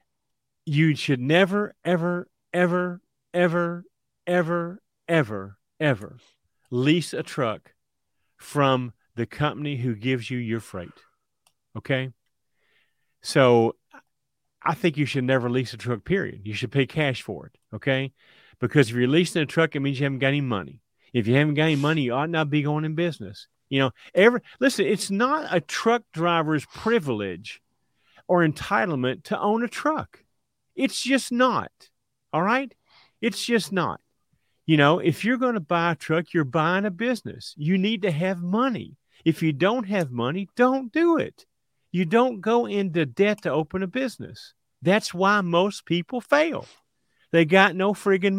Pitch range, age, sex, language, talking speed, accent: 135-200 Hz, 40-59, male, English, 160 wpm, American